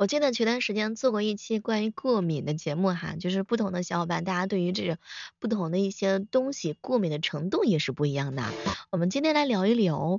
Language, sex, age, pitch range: Chinese, female, 20-39, 180-260 Hz